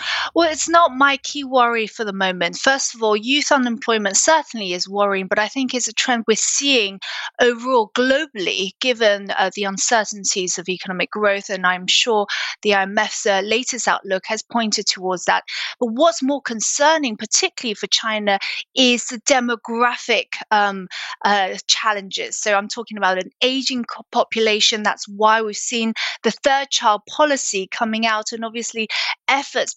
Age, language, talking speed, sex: 20-39, English, 160 wpm, female